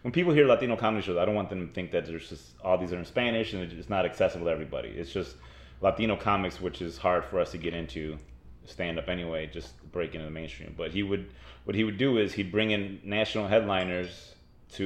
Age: 30-49